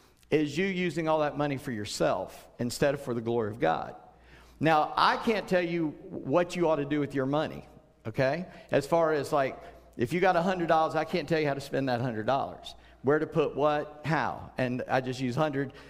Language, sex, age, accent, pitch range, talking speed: English, male, 50-69, American, 135-175 Hz, 210 wpm